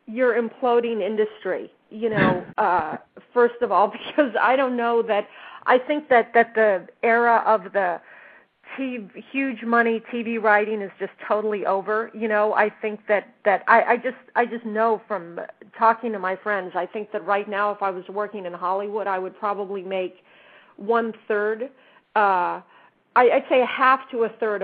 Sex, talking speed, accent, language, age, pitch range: female, 175 wpm, American, English, 40-59, 190-235 Hz